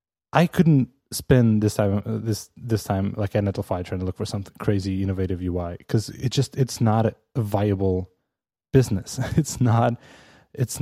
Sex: male